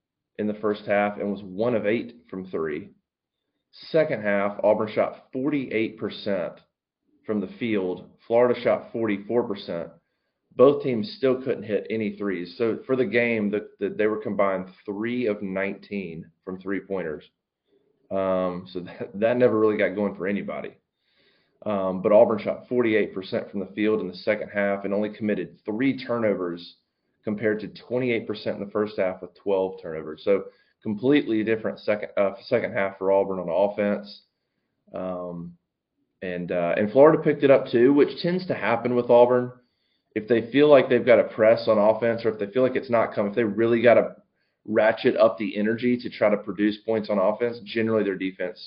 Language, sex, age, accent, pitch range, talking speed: English, male, 30-49, American, 100-120 Hz, 175 wpm